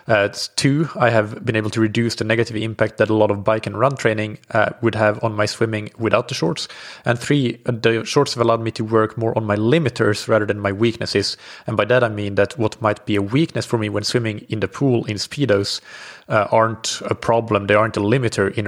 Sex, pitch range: male, 105-120 Hz